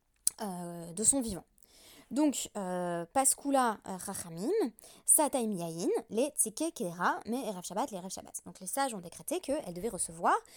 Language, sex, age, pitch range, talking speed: French, female, 20-39, 185-270 Hz, 125 wpm